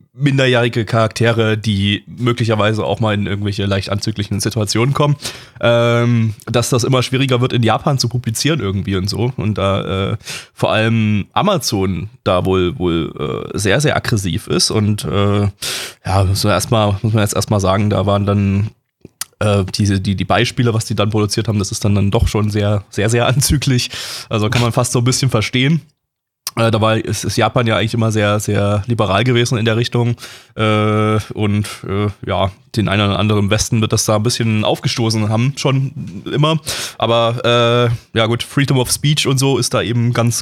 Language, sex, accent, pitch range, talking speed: German, male, German, 105-130 Hz, 185 wpm